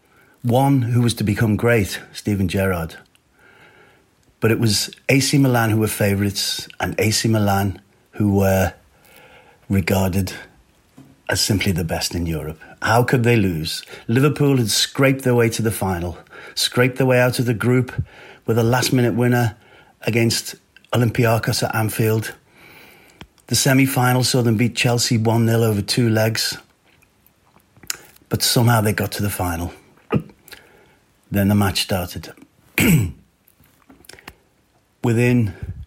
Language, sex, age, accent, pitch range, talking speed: Dutch, male, 40-59, British, 95-120 Hz, 135 wpm